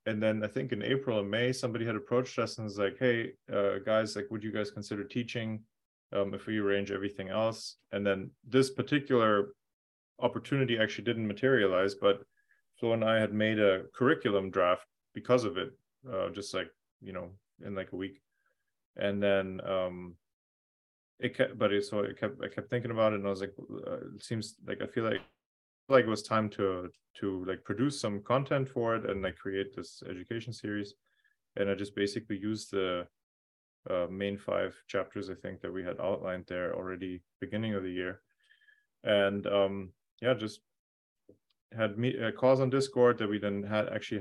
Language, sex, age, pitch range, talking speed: English, male, 30-49, 100-115 Hz, 190 wpm